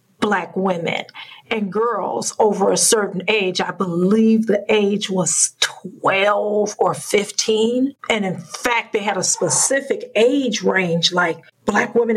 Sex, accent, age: female, American, 50-69